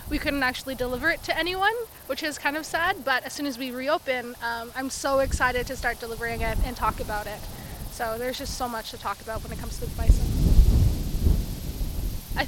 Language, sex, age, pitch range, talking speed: English, female, 20-39, 235-285 Hz, 215 wpm